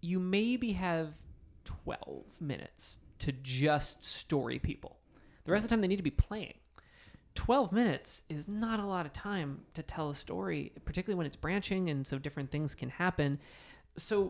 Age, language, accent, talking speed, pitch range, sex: 30-49, English, American, 175 wpm, 140-180 Hz, male